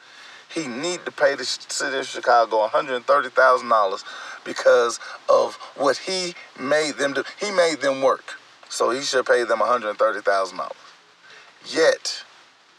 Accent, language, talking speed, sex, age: American, English, 165 wpm, male, 40-59